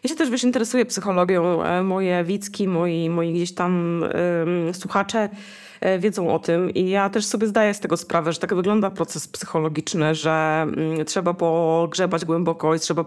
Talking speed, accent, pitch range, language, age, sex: 175 wpm, native, 165-195 Hz, Polish, 20-39, female